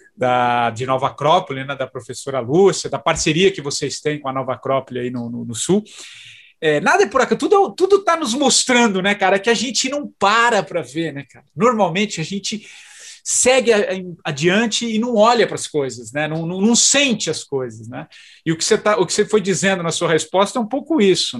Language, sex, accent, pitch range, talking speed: English, male, Brazilian, 160-235 Hz, 220 wpm